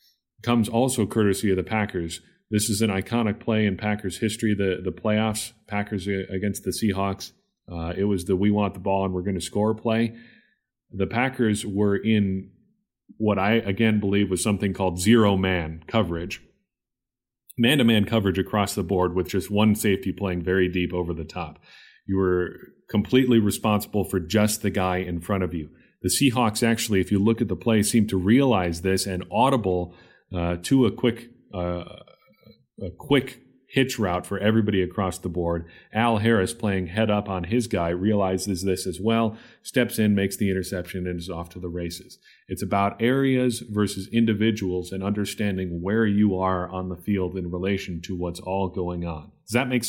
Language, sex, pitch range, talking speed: English, male, 95-115 Hz, 180 wpm